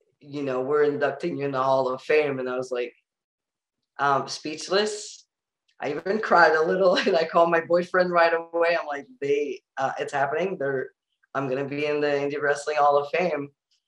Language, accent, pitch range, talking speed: German, American, 145-185 Hz, 200 wpm